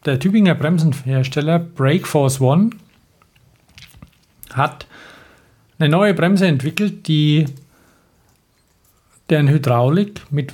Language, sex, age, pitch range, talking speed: German, male, 50-69, 130-165 Hz, 80 wpm